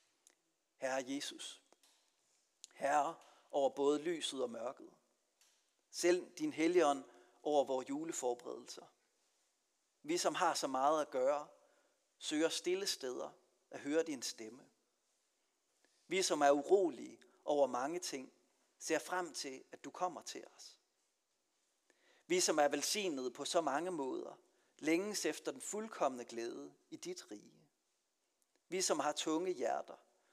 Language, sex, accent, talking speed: Danish, male, native, 125 wpm